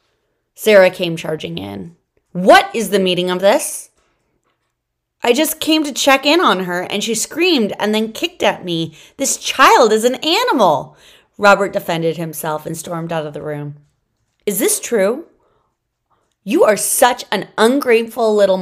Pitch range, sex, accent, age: 165-210 Hz, female, American, 30-49